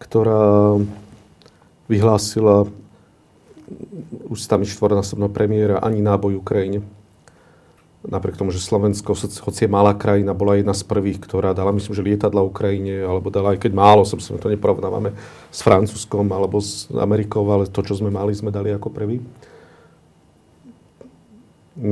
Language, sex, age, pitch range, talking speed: Slovak, male, 40-59, 100-110 Hz, 135 wpm